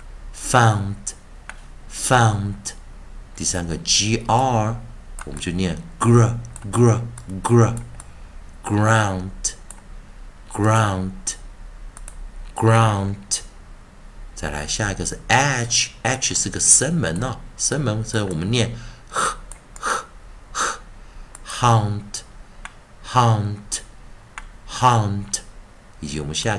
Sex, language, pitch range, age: male, Chinese, 95-115 Hz, 50-69